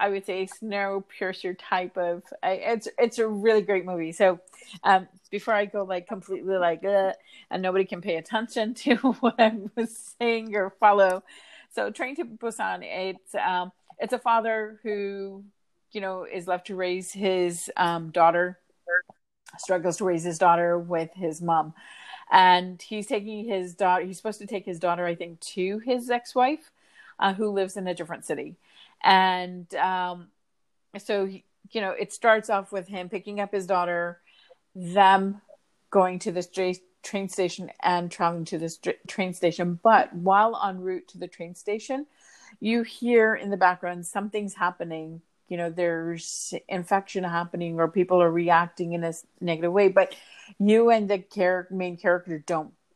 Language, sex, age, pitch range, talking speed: English, female, 40-59, 175-210 Hz, 165 wpm